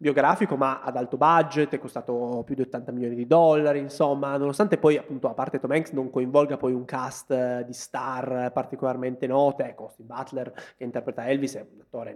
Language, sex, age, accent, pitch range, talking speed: Italian, male, 20-39, native, 130-165 Hz, 195 wpm